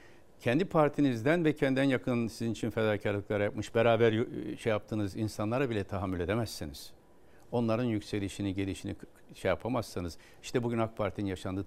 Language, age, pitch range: Turkish, 60-79, 100-120 Hz